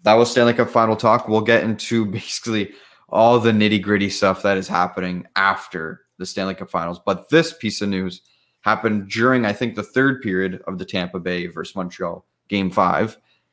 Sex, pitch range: male, 95-115 Hz